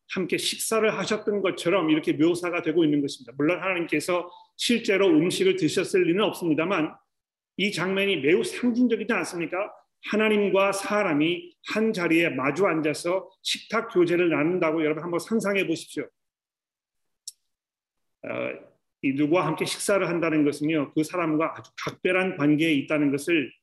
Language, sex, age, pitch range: Korean, male, 40-59, 160-220 Hz